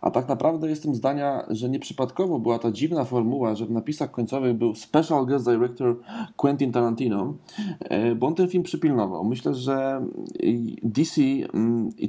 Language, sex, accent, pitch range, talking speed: Polish, male, native, 115-145 Hz, 150 wpm